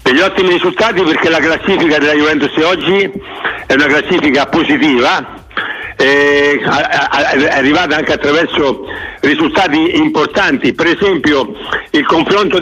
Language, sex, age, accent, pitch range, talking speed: Italian, male, 60-79, native, 175-275 Hz, 115 wpm